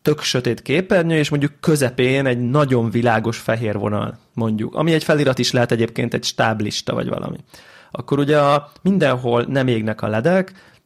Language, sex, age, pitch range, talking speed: Hungarian, male, 30-49, 125-150 Hz, 160 wpm